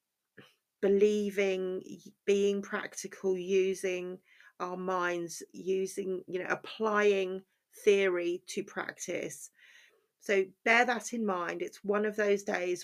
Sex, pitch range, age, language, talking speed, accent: female, 185-230 Hz, 40-59, English, 105 wpm, British